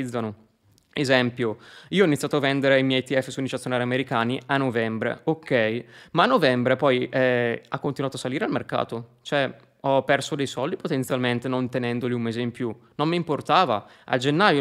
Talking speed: 175 wpm